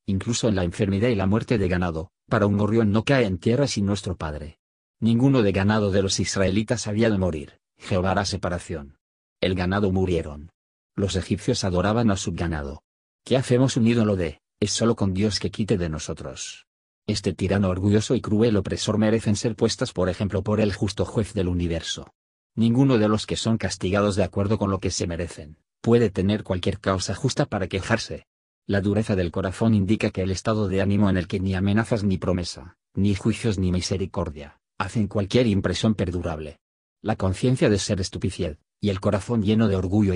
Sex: male